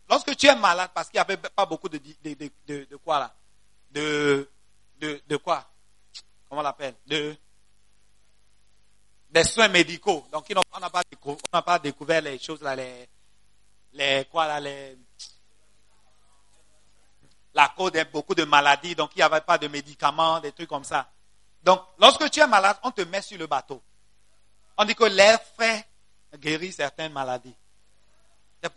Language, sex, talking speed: English, male, 165 wpm